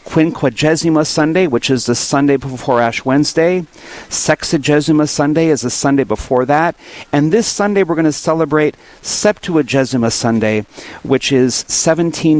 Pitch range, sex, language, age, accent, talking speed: 125-160 Hz, male, English, 50-69, American, 135 wpm